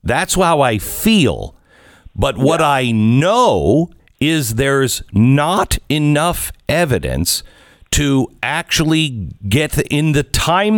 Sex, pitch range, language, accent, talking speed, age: male, 105-160 Hz, English, American, 105 wpm, 50-69